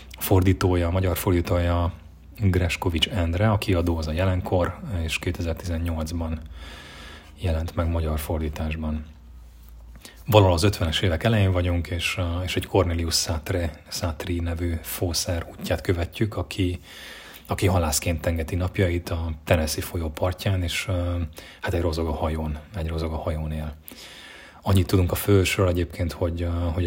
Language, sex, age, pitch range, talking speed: Hungarian, male, 30-49, 80-95 Hz, 135 wpm